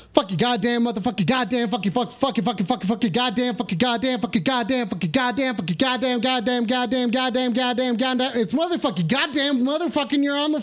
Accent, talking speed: American, 185 wpm